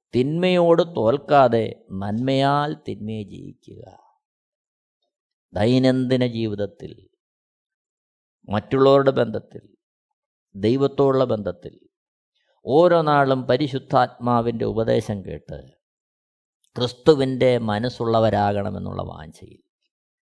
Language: Malayalam